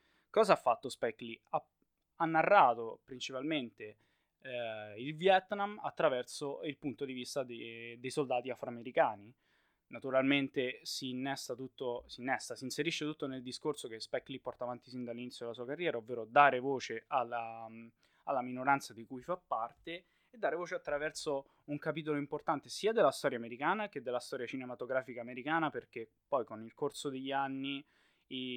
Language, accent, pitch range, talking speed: Italian, native, 125-145 Hz, 155 wpm